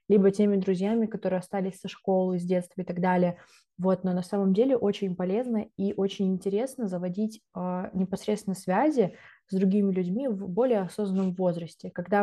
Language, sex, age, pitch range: Russian, female, 20-39, 180-205 Hz